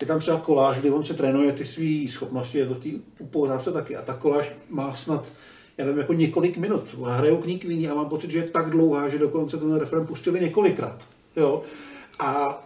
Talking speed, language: 215 wpm, Czech